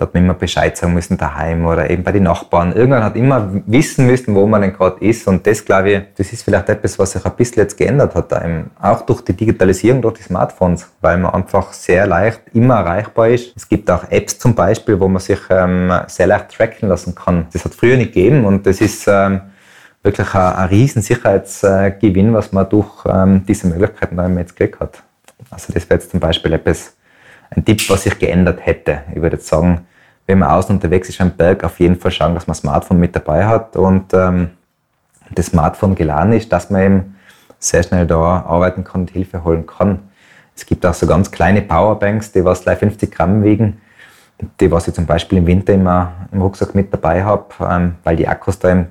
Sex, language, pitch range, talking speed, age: male, German, 90-105 Hz, 215 wpm, 20-39